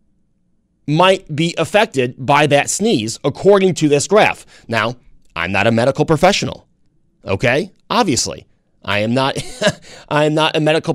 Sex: male